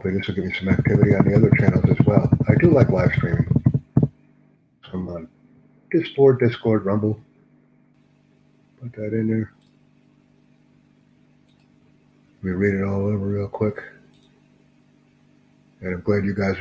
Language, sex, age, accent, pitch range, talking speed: English, male, 60-79, American, 100-130 Hz, 150 wpm